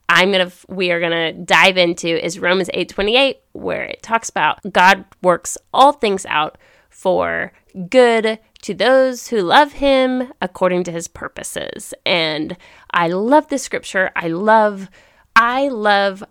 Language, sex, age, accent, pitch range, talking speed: English, female, 30-49, American, 170-215 Hz, 145 wpm